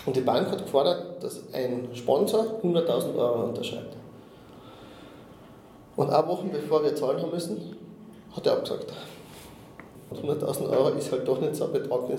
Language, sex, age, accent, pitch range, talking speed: German, male, 20-39, German, 125-145 Hz, 155 wpm